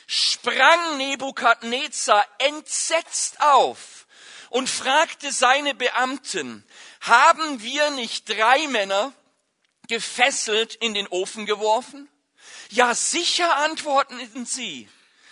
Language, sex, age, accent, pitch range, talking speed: German, male, 50-69, German, 235-290 Hz, 85 wpm